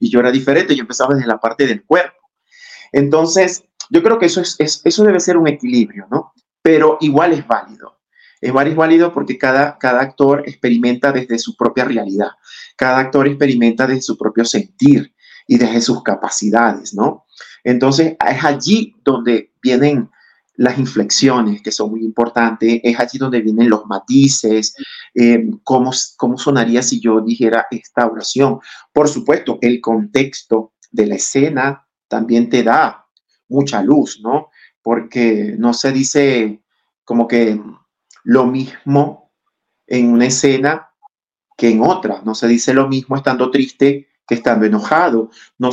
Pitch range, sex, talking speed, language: 115-140 Hz, male, 150 wpm, Spanish